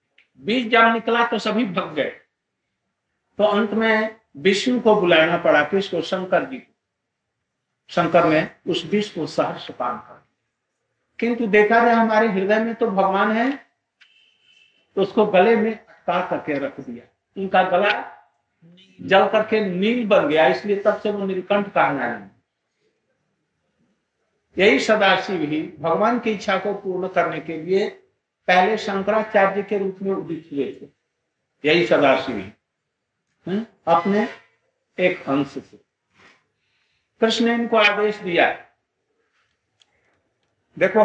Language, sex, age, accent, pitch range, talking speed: Hindi, male, 60-79, native, 170-220 Hz, 110 wpm